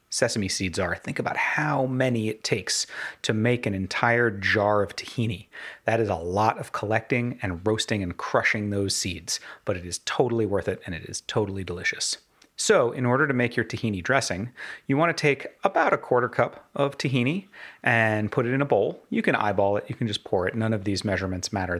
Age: 30-49